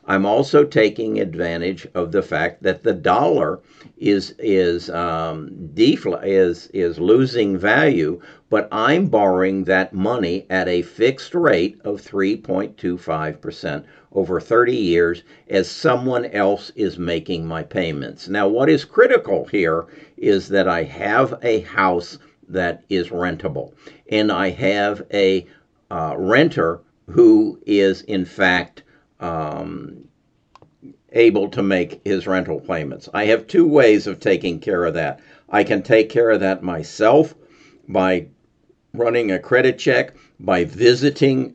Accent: American